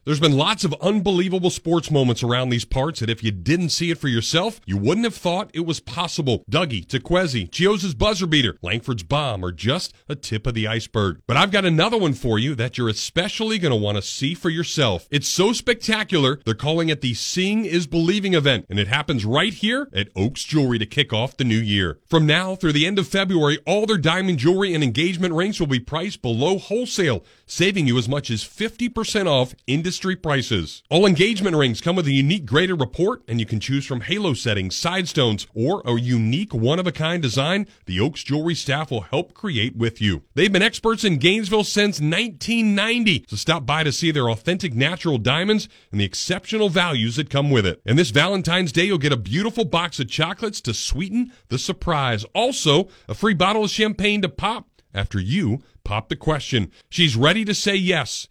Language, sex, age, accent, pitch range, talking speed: English, male, 40-59, American, 120-185 Hz, 205 wpm